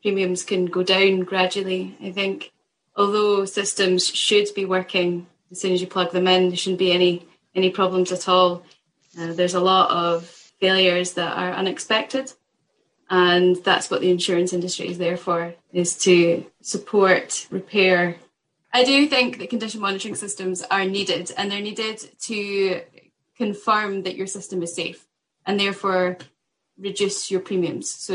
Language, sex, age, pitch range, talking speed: English, female, 10-29, 175-195 Hz, 160 wpm